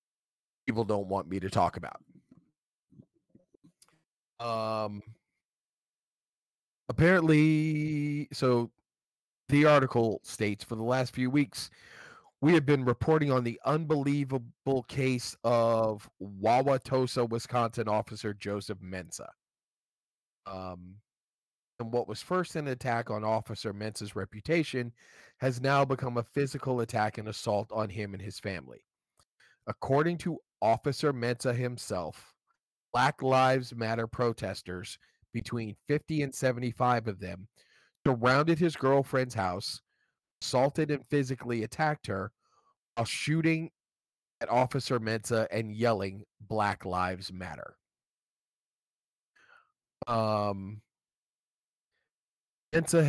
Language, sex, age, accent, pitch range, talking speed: English, male, 30-49, American, 105-140 Hz, 105 wpm